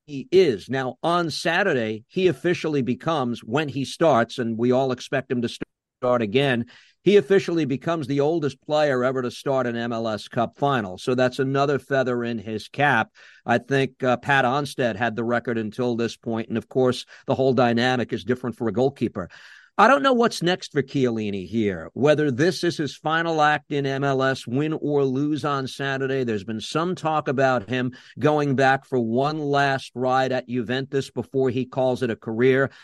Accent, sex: American, male